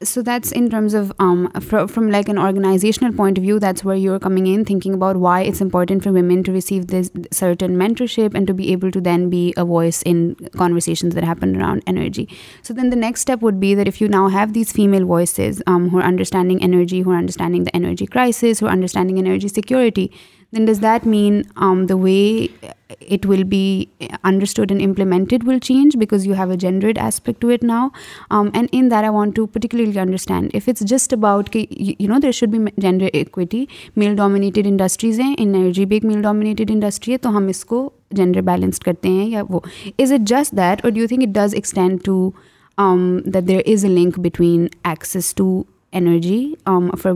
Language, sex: Urdu, female